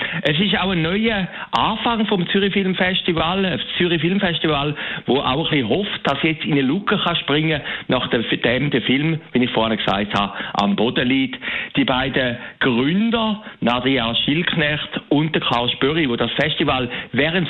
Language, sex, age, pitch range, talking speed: German, male, 60-79, 120-175 Hz, 170 wpm